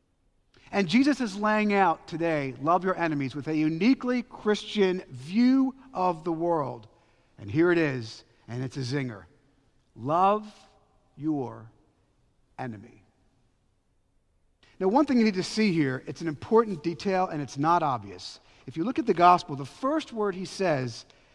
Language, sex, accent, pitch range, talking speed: English, male, American, 145-225 Hz, 155 wpm